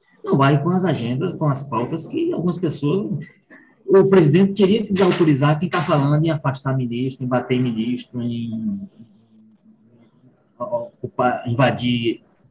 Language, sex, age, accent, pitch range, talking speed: Portuguese, male, 20-39, Brazilian, 135-195 Hz, 135 wpm